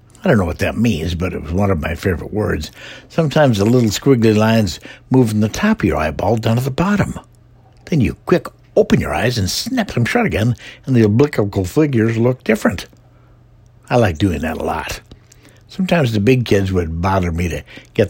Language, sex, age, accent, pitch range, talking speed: English, male, 60-79, American, 90-125 Hz, 205 wpm